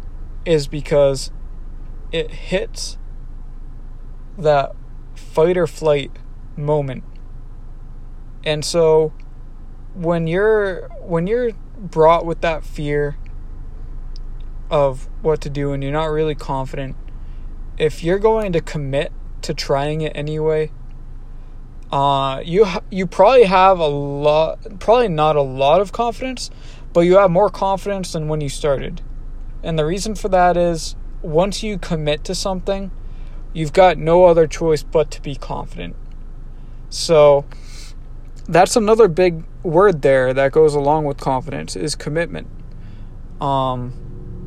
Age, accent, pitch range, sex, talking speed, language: 20-39, American, 130-180 Hz, male, 125 wpm, English